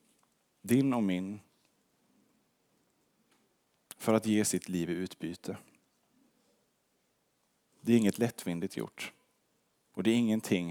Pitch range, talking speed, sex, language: 95-130 Hz, 105 wpm, male, Swedish